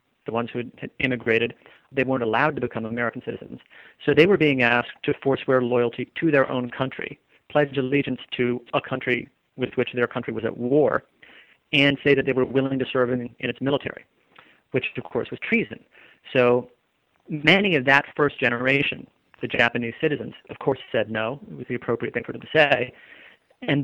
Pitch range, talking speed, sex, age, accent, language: 120-140 Hz, 190 wpm, male, 40-59, American, English